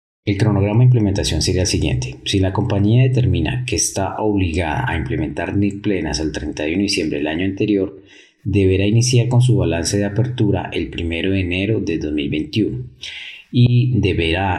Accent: Colombian